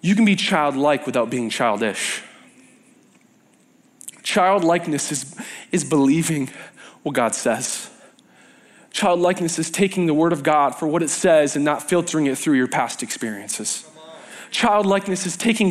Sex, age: male, 20-39